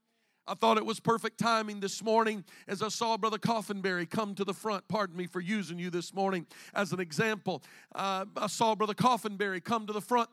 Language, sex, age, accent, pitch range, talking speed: English, male, 50-69, American, 190-225 Hz, 210 wpm